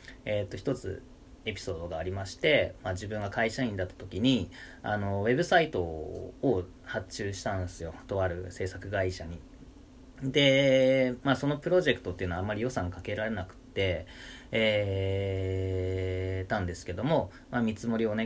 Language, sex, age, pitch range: Japanese, male, 30-49, 90-125 Hz